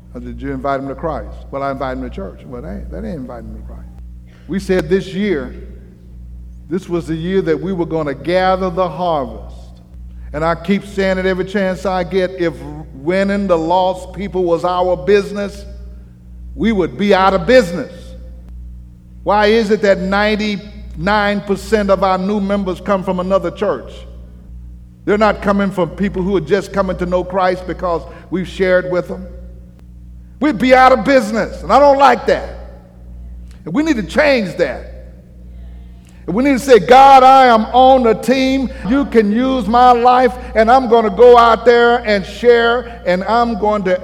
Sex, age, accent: male, 50-69, American